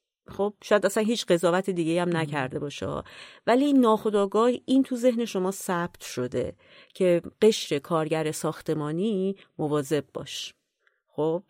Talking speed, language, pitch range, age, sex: 125 wpm, Persian, 155-220 Hz, 30-49, female